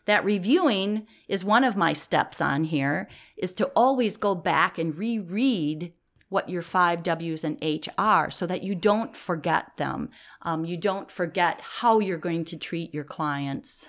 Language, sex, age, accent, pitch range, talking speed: English, female, 40-59, American, 155-205 Hz, 175 wpm